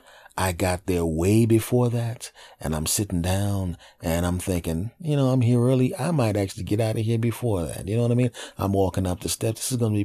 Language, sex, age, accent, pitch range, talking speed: English, male, 30-49, American, 90-115 Hz, 250 wpm